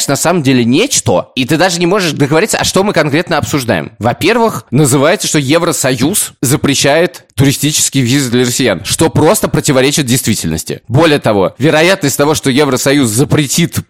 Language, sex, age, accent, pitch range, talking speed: Russian, male, 20-39, native, 120-150 Hz, 150 wpm